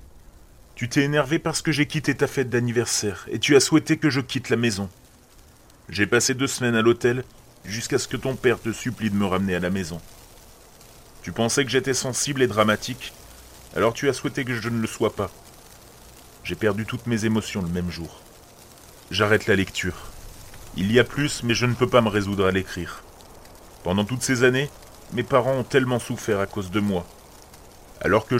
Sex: male